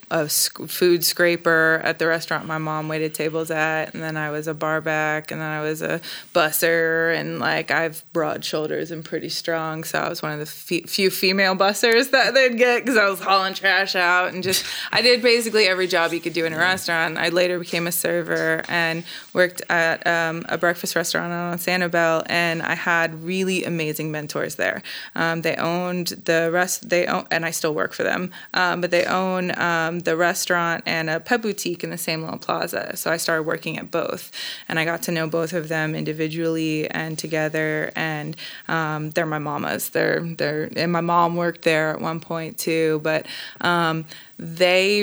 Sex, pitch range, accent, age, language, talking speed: female, 160-180 Hz, American, 20-39, English, 200 wpm